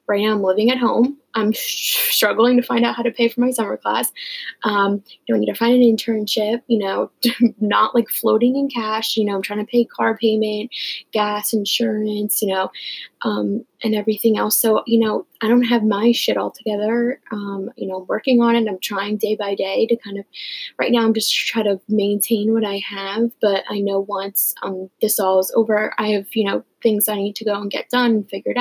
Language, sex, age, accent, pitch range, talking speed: English, female, 10-29, American, 205-235 Hz, 220 wpm